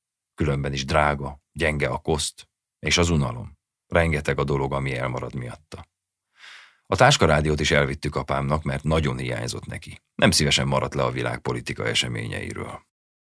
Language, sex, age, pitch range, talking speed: Hungarian, male, 30-49, 70-80 Hz, 140 wpm